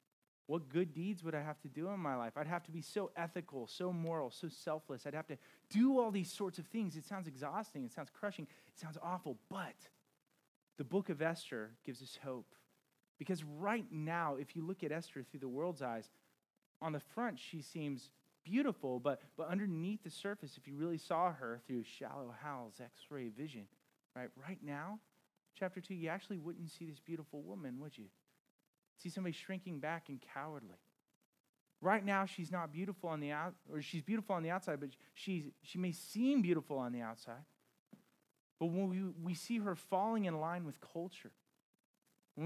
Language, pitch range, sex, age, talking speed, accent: English, 140-190 Hz, male, 30-49, 190 wpm, American